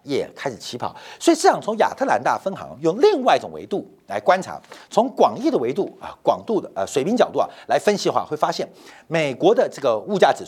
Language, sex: Chinese, male